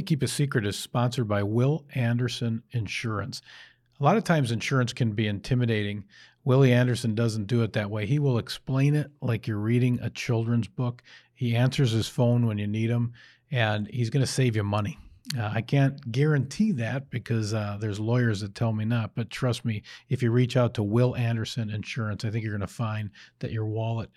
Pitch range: 110-130 Hz